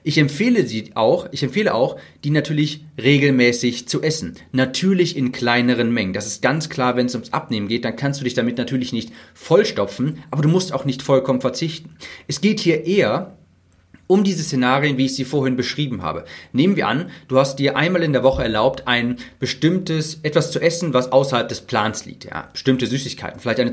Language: German